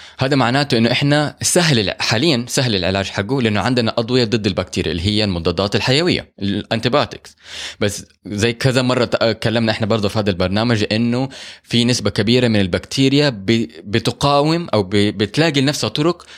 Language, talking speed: Arabic, 140 wpm